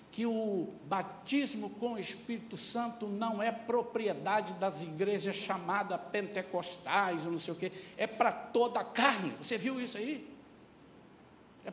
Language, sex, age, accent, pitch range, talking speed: Portuguese, male, 60-79, Brazilian, 225-290 Hz, 150 wpm